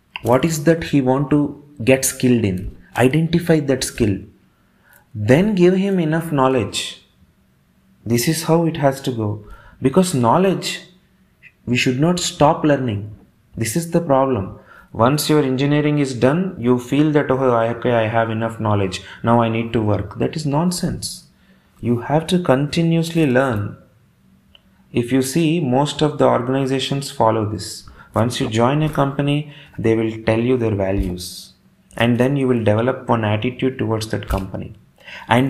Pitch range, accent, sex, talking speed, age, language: 110-150 Hz, native, male, 155 wpm, 30-49, Telugu